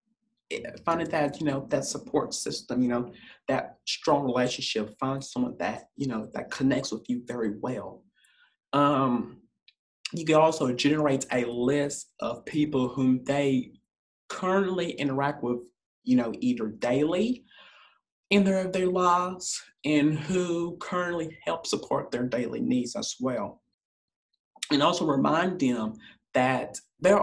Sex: male